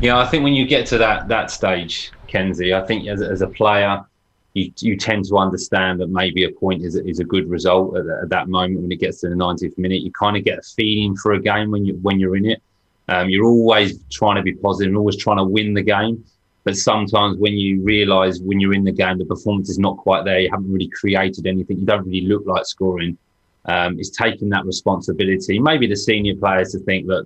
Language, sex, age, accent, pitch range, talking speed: English, male, 20-39, British, 95-105 Hz, 250 wpm